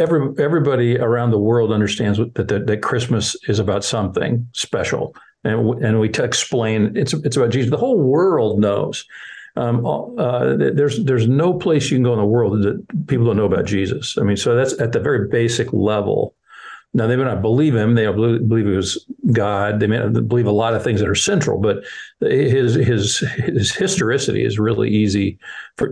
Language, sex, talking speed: English, male, 200 wpm